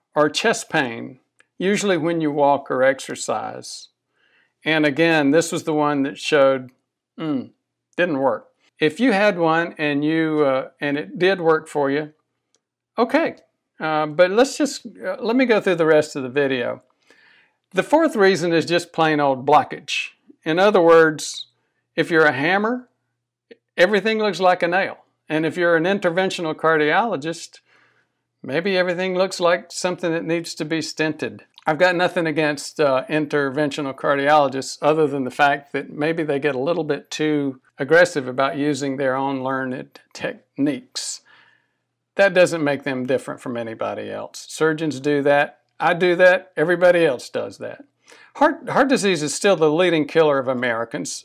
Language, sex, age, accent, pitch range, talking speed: English, male, 60-79, American, 145-180 Hz, 160 wpm